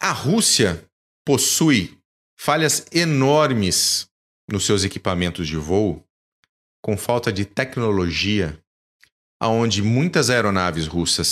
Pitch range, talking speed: 90-130 Hz, 95 wpm